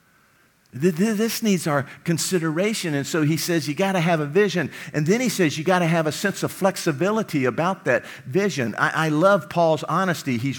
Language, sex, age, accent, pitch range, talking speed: English, male, 50-69, American, 140-190 Hz, 200 wpm